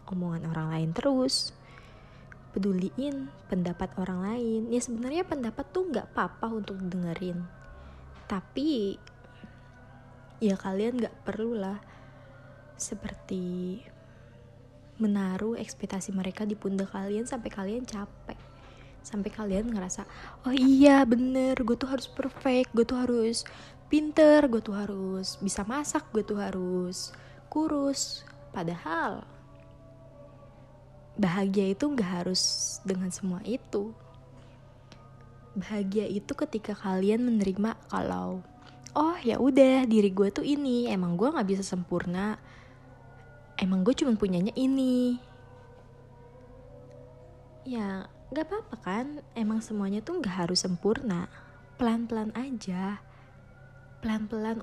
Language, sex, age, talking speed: Indonesian, female, 20-39, 110 wpm